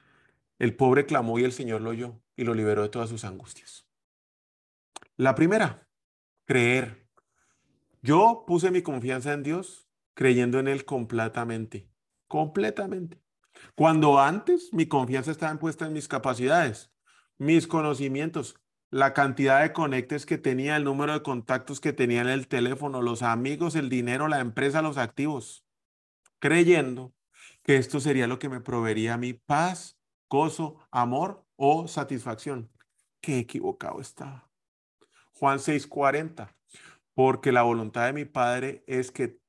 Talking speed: 135 wpm